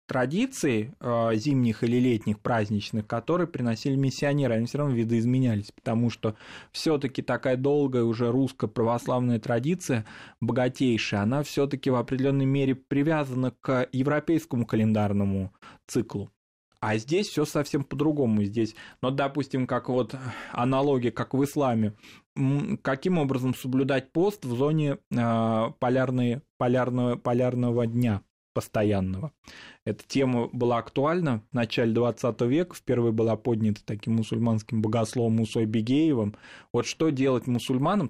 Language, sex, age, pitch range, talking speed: Russian, male, 20-39, 110-135 Hz, 120 wpm